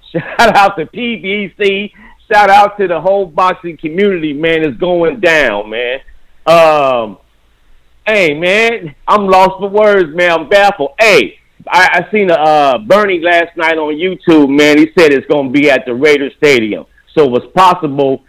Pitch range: 140-185 Hz